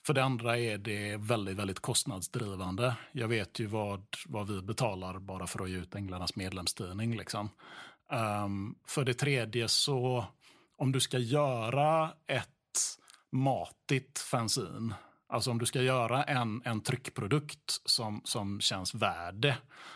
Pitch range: 105-140 Hz